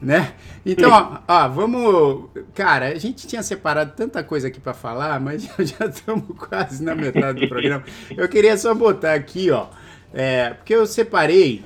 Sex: male